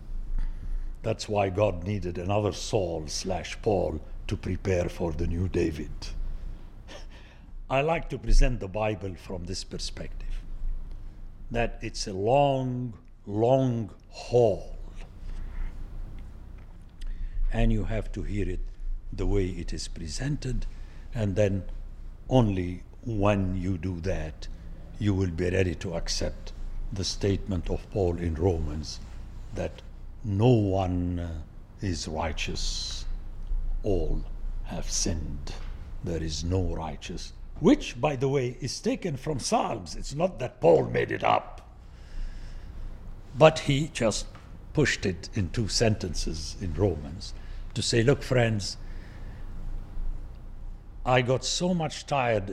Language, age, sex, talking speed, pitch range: English, 60-79, male, 120 wpm, 90-110 Hz